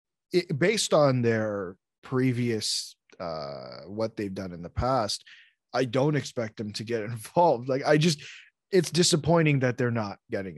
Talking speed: 155 wpm